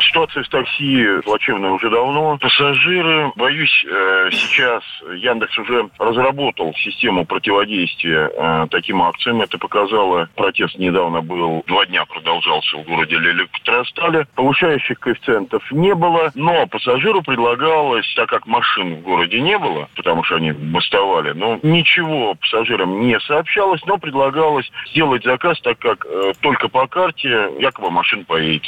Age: 40-59